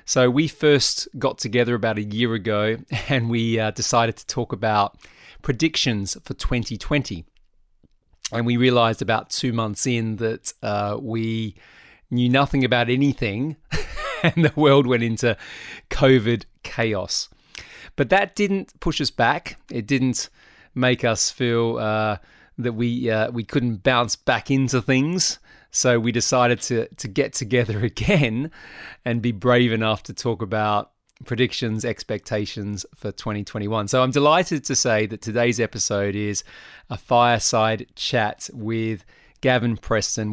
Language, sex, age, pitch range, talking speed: English, male, 30-49, 110-130 Hz, 140 wpm